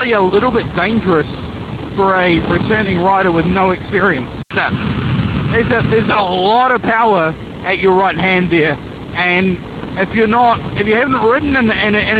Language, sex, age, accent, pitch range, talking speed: English, male, 50-69, Australian, 185-230 Hz, 165 wpm